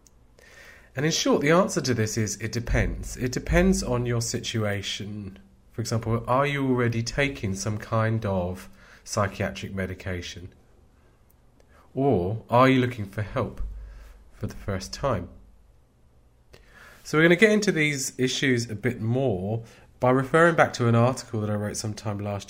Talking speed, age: 155 wpm, 30-49